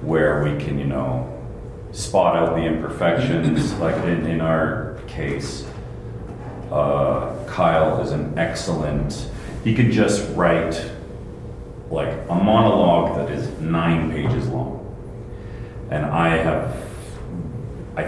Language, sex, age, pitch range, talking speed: English, male, 40-59, 75-110 Hz, 115 wpm